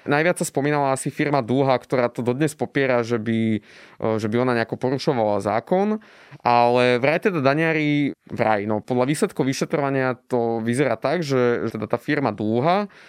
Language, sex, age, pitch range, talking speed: Slovak, male, 20-39, 125-165 Hz, 165 wpm